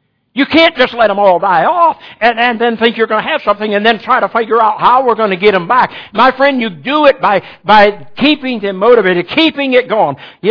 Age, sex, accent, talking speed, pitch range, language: 60-79, male, American, 250 wpm, 175-250 Hz, English